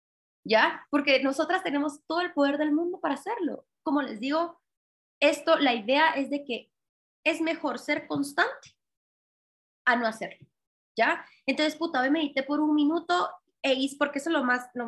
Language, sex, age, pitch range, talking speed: Spanish, female, 20-39, 245-315 Hz, 175 wpm